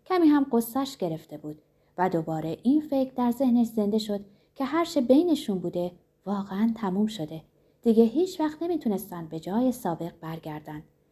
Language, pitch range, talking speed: Persian, 165-275 Hz, 150 wpm